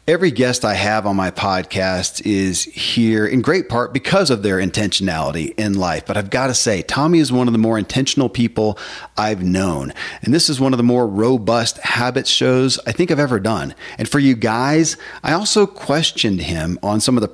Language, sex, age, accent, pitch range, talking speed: English, male, 40-59, American, 105-145 Hz, 210 wpm